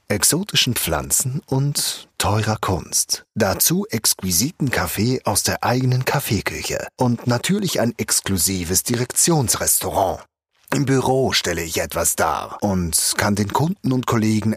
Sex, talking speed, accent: male, 120 wpm, German